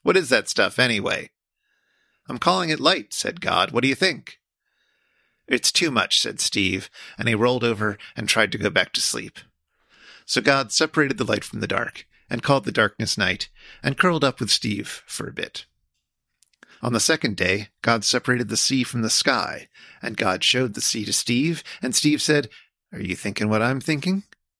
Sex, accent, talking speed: male, American, 195 wpm